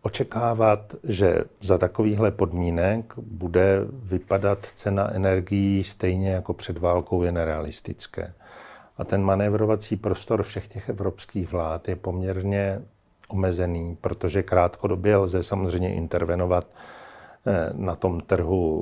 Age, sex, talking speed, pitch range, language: 50-69, male, 110 wpm, 90-100 Hz, Czech